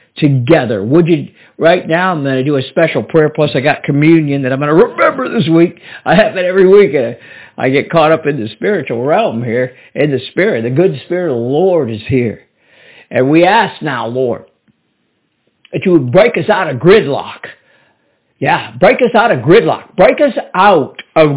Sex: male